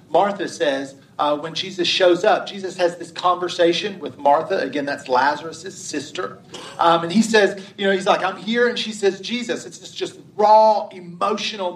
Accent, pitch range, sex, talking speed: American, 170-205 Hz, male, 185 wpm